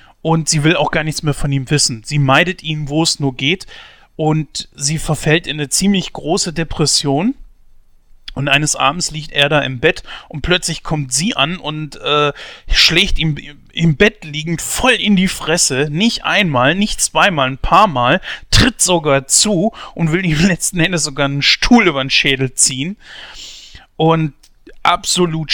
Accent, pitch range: German, 135-165 Hz